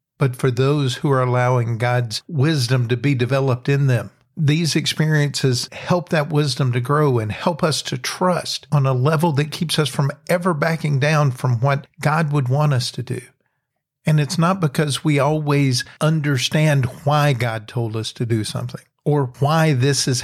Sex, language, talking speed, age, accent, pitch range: male, English, 180 wpm, 50-69, American, 125-150 Hz